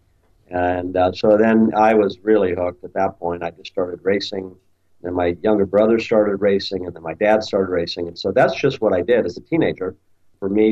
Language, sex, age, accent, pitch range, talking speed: English, male, 50-69, American, 90-105 Hz, 220 wpm